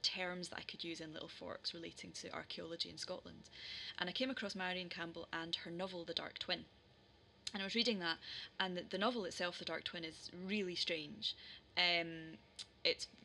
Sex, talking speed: female, 200 wpm